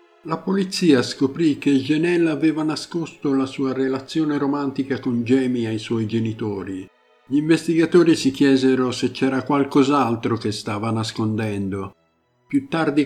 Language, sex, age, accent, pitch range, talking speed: Italian, male, 50-69, native, 115-145 Hz, 130 wpm